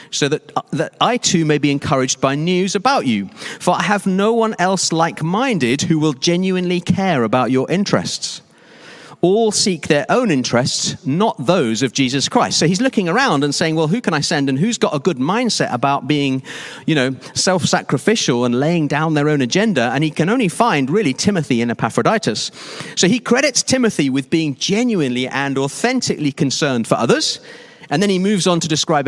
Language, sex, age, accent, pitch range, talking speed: English, male, 40-59, British, 140-195 Hz, 190 wpm